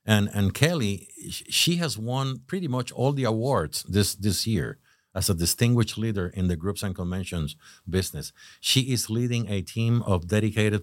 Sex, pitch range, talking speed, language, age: male, 90-110 Hz, 170 wpm, English, 50-69